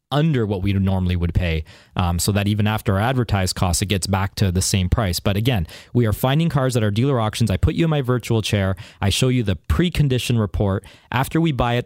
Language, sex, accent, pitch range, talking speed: English, male, American, 105-135 Hz, 245 wpm